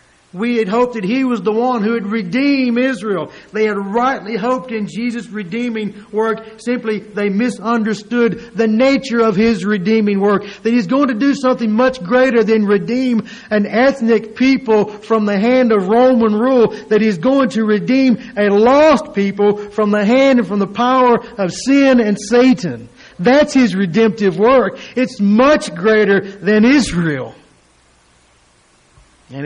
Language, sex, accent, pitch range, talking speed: English, male, American, 170-235 Hz, 155 wpm